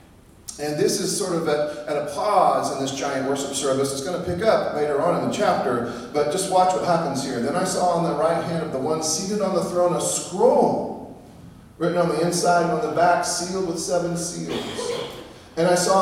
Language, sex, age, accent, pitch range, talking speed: English, male, 40-59, American, 135-190 Hz, 230 wpm